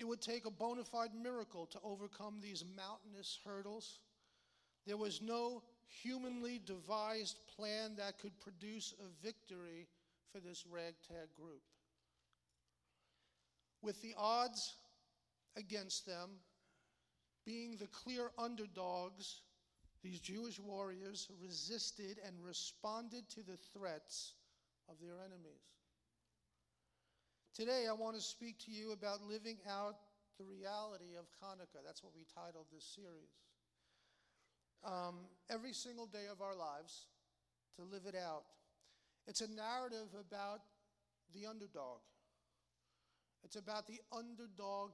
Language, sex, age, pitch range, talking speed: English, male, 50-69, 175-215 Hz, 120 wpm